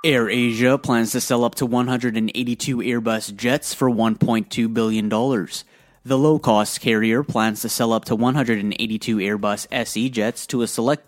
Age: 20-39